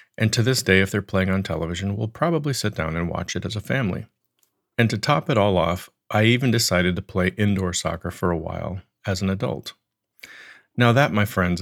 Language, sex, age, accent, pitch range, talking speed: English, male, 40-59, American, 90-115 Hz, 215 wpm